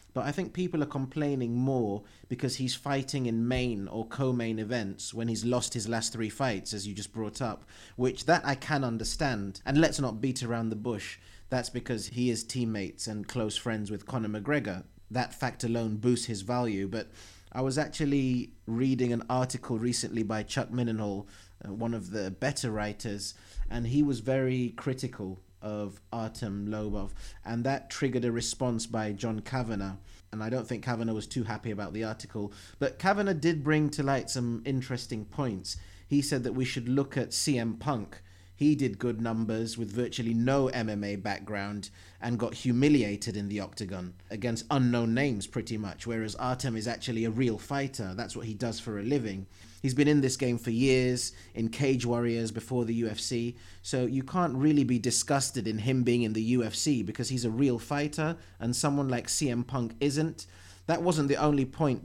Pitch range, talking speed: 105-130 Hz, 185 wpm